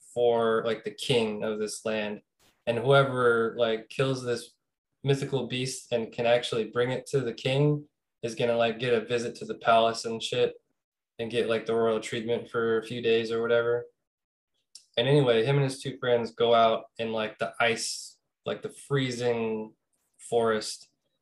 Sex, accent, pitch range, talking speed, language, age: male, American, 115-140 Hz, 175 wpm, English, 20-39